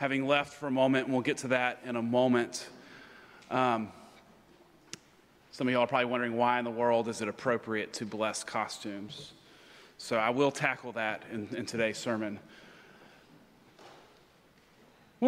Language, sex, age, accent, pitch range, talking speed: English, male, 30-49, American, 135-190 Hz, 155 wpm